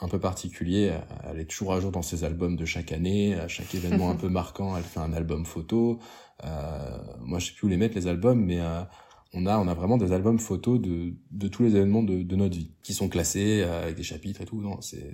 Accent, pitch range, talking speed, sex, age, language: French, 85-105 Hz, 255 wpm, male, 20-39, French